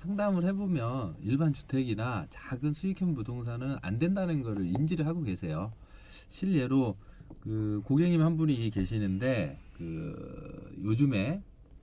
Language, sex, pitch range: Korean, male, 95-145 Hz